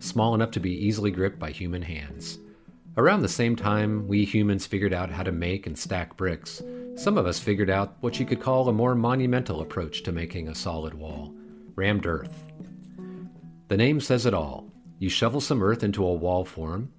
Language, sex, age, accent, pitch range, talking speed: English, male, 40-59, American, 90-115 Hz, 200 wpm